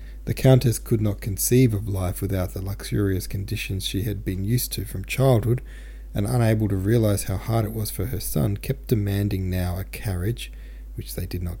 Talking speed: 195 wpm